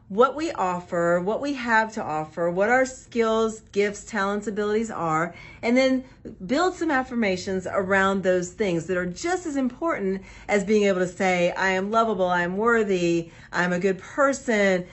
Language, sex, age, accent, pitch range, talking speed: English, female, 40-59, American, 175-230 Hz, 170 wpm